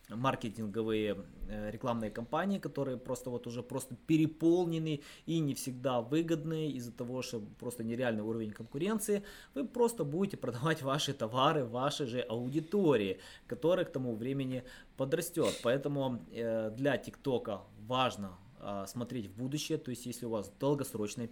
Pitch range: 115-145 Hz